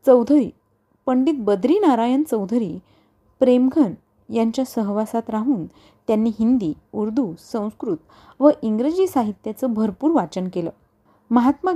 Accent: native